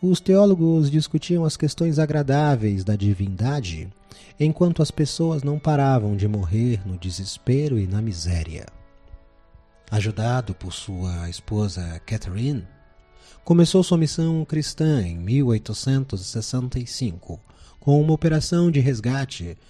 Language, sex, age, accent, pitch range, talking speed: Portuguese, male, 40-59, Brazilian, 95-140 Hz, 110 wpm